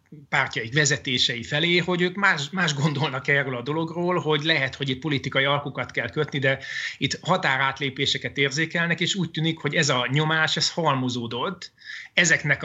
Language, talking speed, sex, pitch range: Hungarian, 155 wpm, male, 135-155 Hz